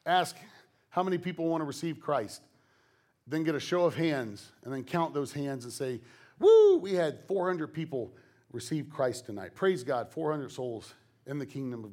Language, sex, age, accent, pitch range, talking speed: English, male, 40-59, American, 120-160 Hz, 185 wpm